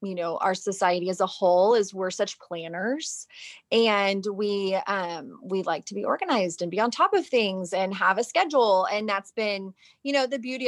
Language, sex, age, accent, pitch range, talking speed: English, female, 30-49, American, 190-225 Hz, 185 wpm